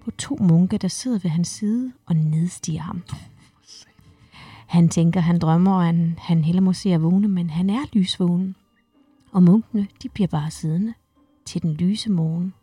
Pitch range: 170-205 Hz